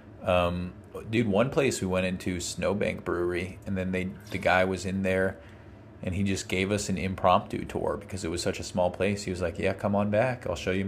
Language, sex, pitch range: English, male, 95-105 Hz